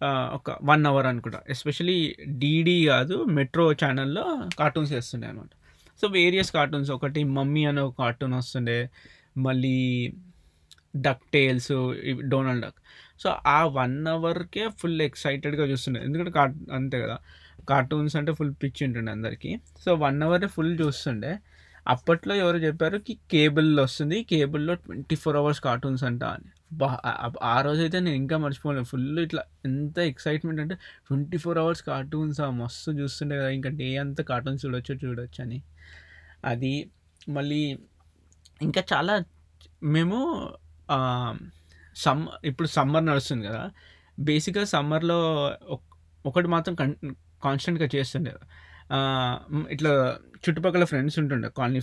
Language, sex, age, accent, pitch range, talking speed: Telugu, male, 20-39, native, 125-155 Hz, 125 wpm